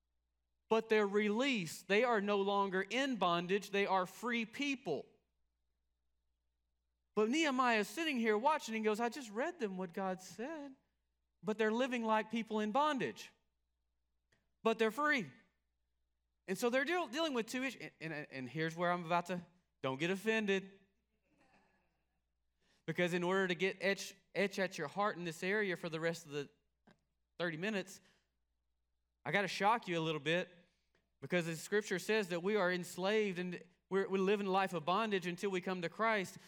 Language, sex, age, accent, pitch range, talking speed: English, male, 30-49, American, 160-210 Hz, 175 wpm